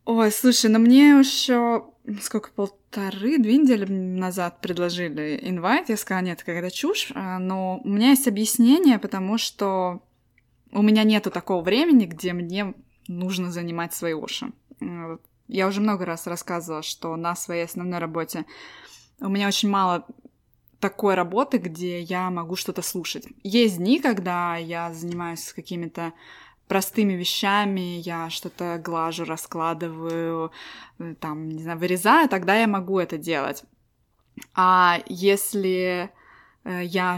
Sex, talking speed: female, 130 wpm